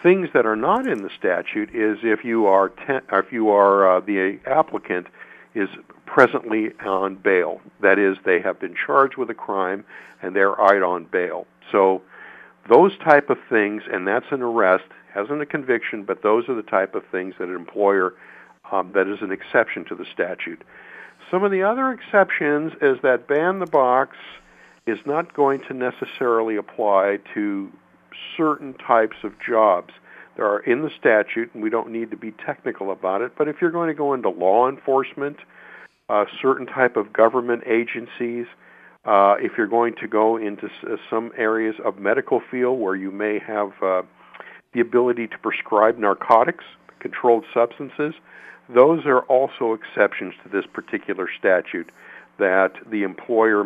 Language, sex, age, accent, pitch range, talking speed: English, male, 60-79, American, 100-135 Hz, 170 wpm